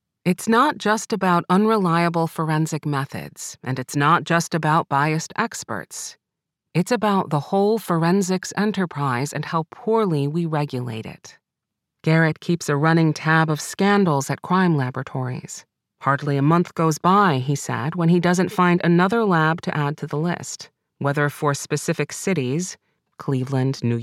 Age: 40-59